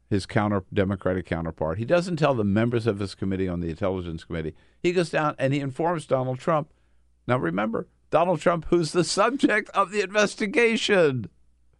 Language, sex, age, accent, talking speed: English, male, 50-69, American, 170 wpm